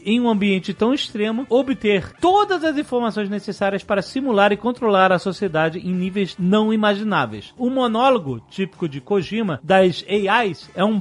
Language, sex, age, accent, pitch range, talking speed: Portuguese, male, 40-59, Brazilian, 175-235 Hz, 160 wpm